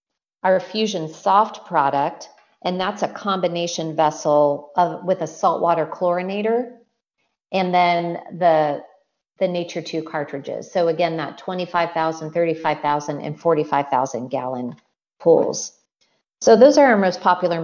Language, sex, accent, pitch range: English, female, American, 160-195 Hz